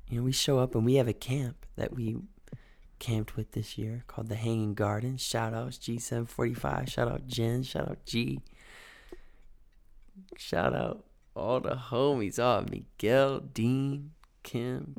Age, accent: 20-39, American